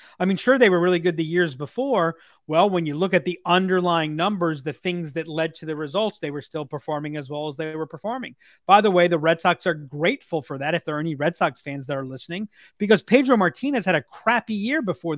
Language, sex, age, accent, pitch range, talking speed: English, male, 30-49, American, 155-205 Hz, 250 wpm